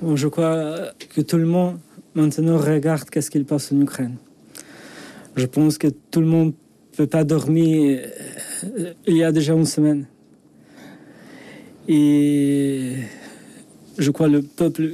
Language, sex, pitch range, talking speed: French, male, 140-160 Hz, 145 wpm